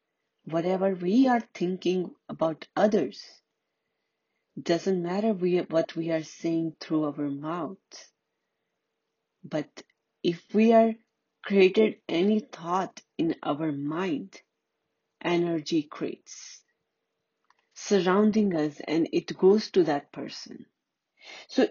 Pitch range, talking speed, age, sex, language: 170-225 Hz, 100 wpm, 40-59, female, Hindi